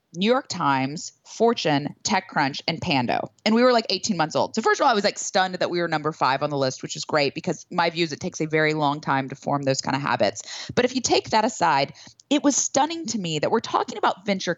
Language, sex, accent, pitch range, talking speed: English, female, American, 165-225 Hz, 270 wpm